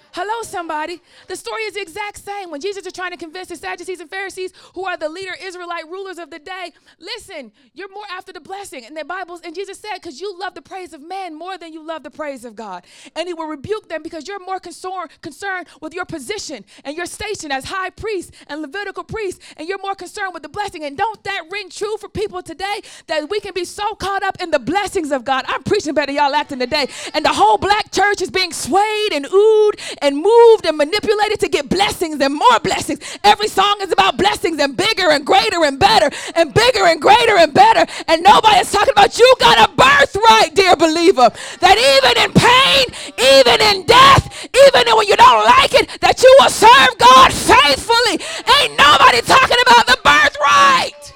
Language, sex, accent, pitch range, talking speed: English, female, American, 320-410 Hz, 210 wpm